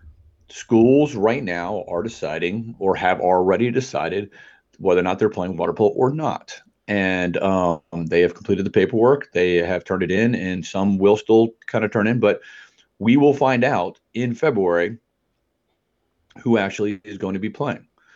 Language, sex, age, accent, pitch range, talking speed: English, male, 40-59, American, 90-110 Hz, 170 wpm